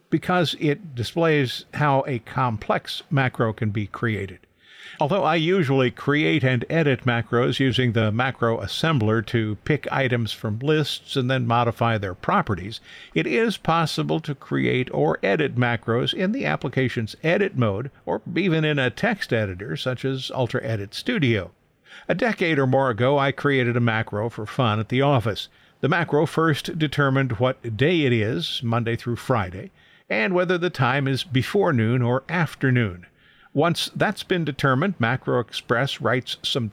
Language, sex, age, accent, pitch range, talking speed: English, male, 50-69, American, 115-155 Hz, 155 wpm